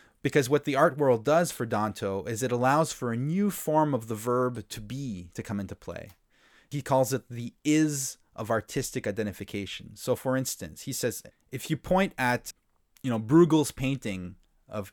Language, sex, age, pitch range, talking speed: English, male, 30-49, 105-135 Hz, 185 wpm